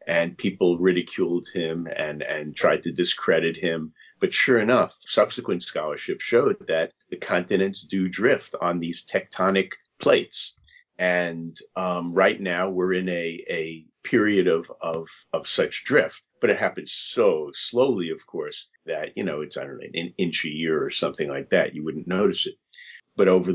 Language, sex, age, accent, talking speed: English, male, 50-69, American, 170 wpm